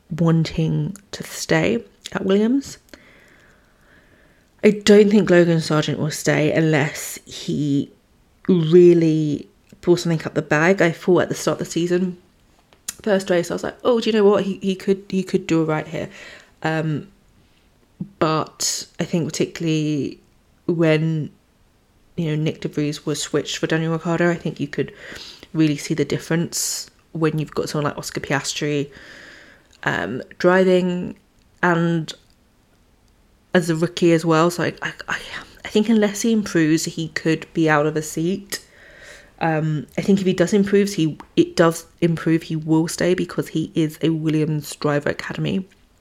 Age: 20-39